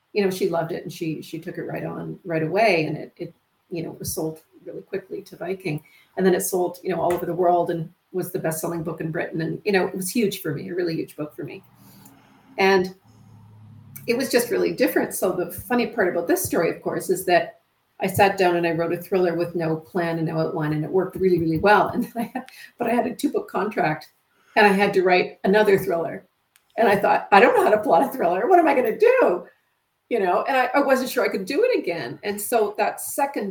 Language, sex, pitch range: English, female, 165-205 Hz